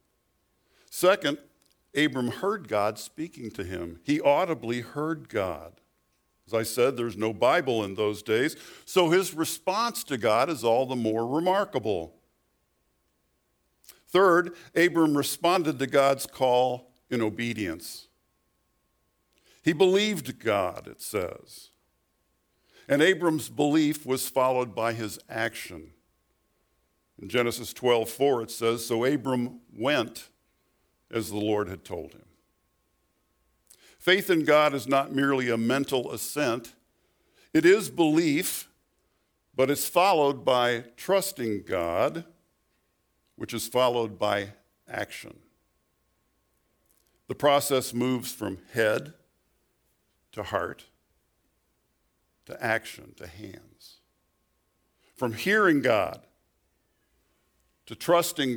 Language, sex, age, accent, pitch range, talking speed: English, male, 60-79, American, 105-150 Hz, 105 wpm